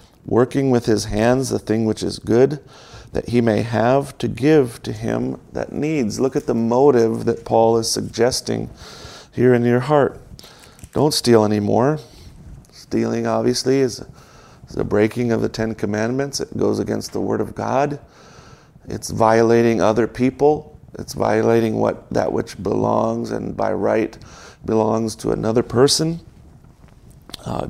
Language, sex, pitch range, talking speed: English, male, 110-130 Hz, 145 wpm